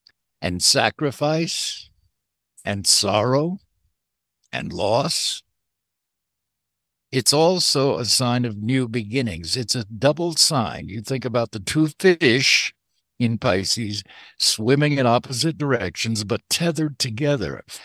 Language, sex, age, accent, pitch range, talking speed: English, male, 60-79, American, 110-140 Hz, 110 wpm